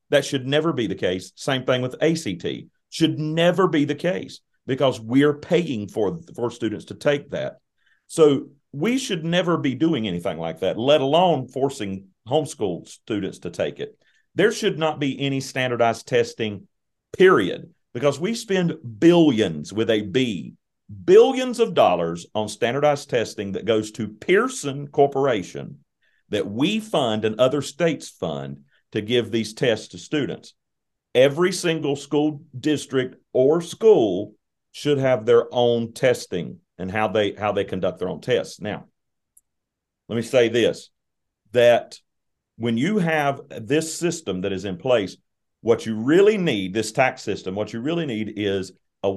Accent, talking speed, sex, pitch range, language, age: American, 155 wpm, male, 110-160 Hz, English, 40-59